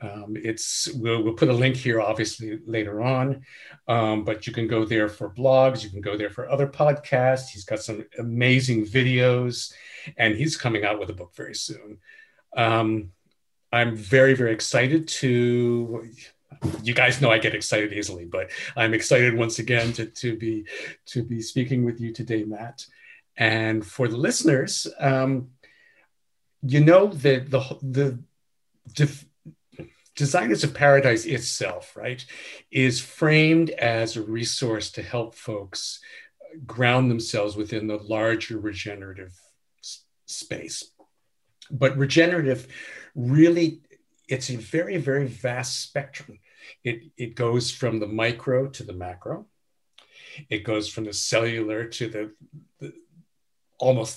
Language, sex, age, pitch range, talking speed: English, male, 50-69, 110-135 Hz, 140 wpm